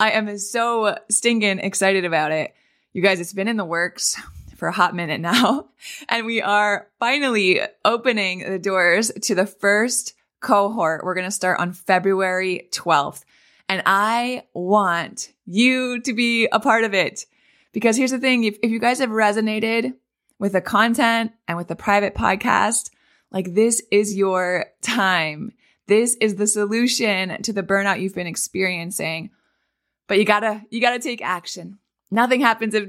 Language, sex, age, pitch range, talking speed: English, female, 20-39, 190-230 Hz, 165 wpm